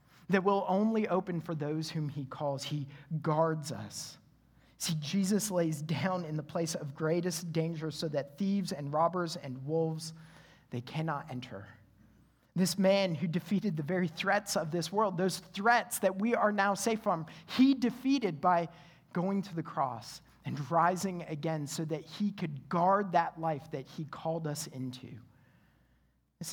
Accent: American